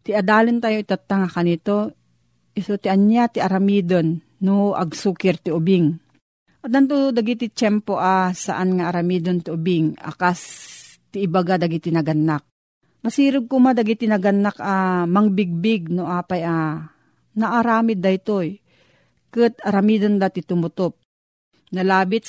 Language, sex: Filipino, female